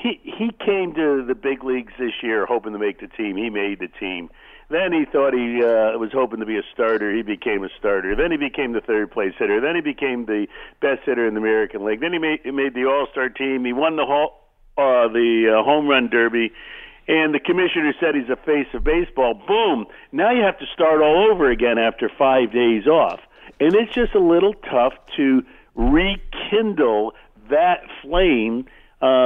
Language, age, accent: English, 50-69, American